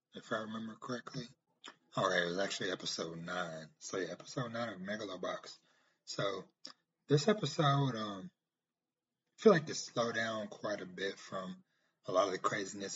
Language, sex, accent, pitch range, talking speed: English, male, American, 90-110 Hz, 160 wpm